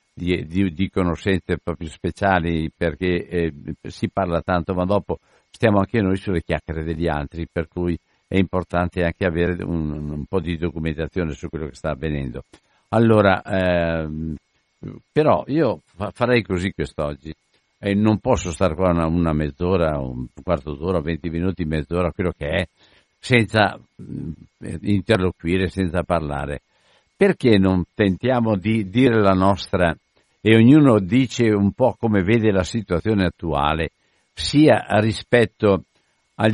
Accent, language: native, Italian